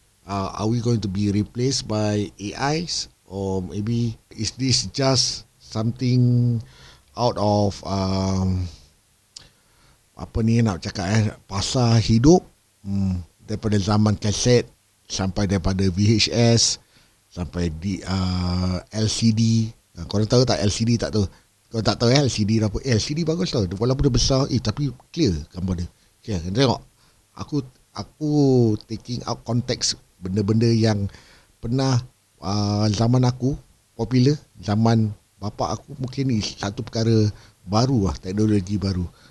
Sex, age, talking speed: male, 50-69, 135 wpm